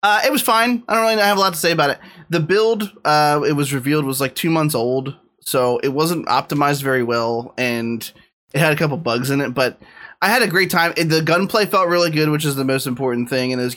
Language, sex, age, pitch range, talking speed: English, male, 20-39, 125-155 Hz, 255 wpm